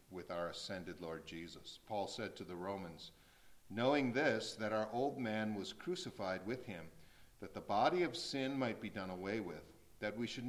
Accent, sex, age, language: American, male, 50-69, English